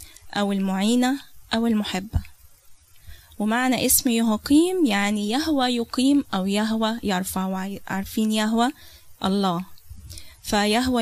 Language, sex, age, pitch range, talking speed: Arabic, female, 10-29, 180-245 Hz, 95 wpm